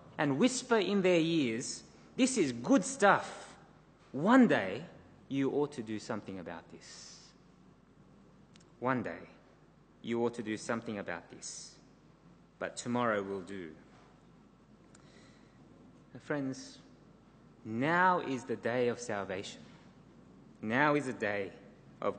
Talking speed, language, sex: 115 wpm, English, male